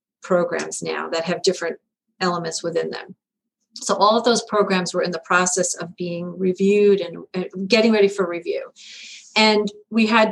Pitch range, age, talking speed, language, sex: 185-225 Hz, 40-59, 165 wpm, English, female